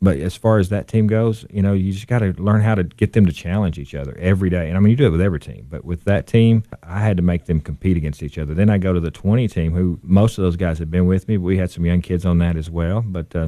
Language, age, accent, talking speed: English, 40-59, American, 325 wpm